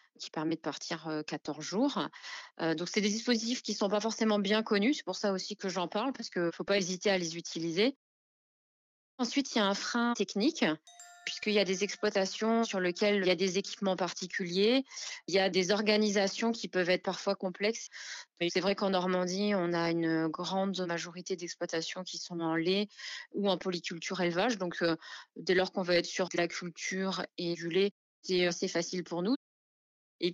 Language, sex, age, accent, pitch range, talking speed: French, female, 20-39, French, 175-210 Hz, 200 wpm